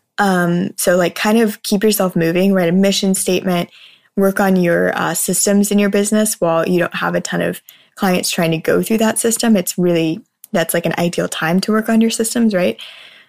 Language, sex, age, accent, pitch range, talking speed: English, female, 10-29, American, 170-200 Hz, 210 wpm